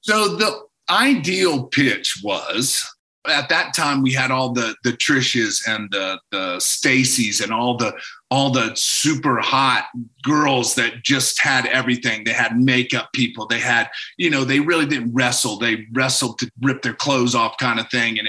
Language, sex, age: English, male, 40-59